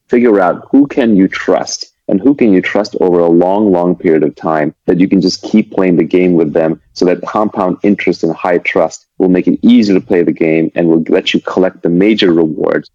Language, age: English, 30-49